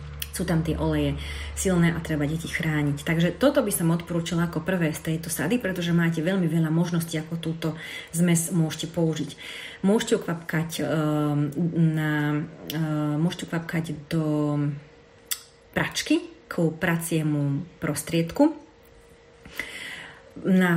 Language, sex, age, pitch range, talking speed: Slovak, female, 30-49, 155-170 Hz, 115 wpm